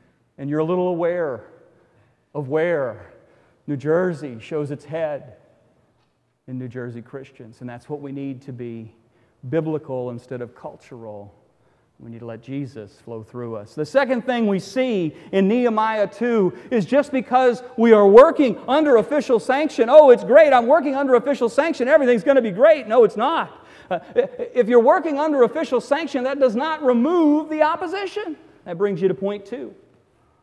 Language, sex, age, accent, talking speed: English, male, 40-59, American, 170 wpm